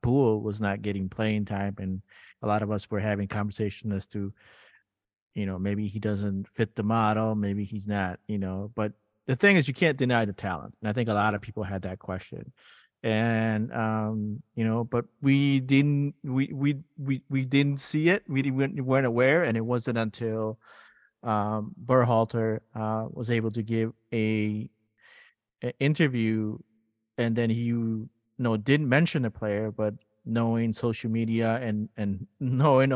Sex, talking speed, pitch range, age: male, 175 wpm, 105-120 Hz, 30-49